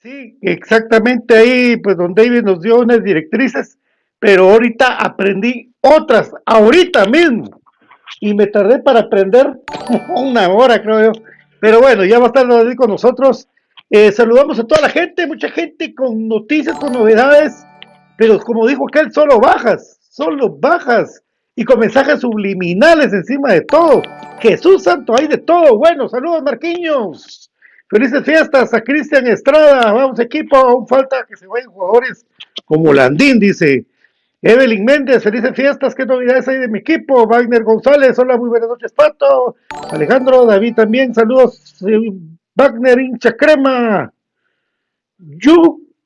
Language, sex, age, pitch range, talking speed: Spanish, male, 50-69, 220-275 Hz, 145 wpm